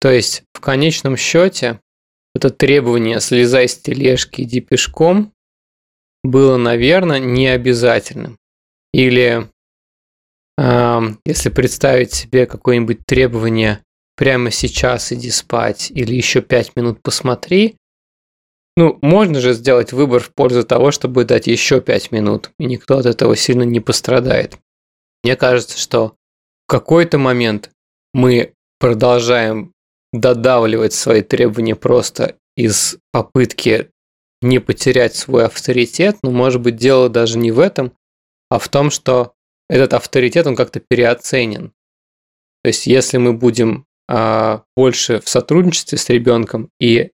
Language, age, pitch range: Russian, 20-39, 115-130 Hz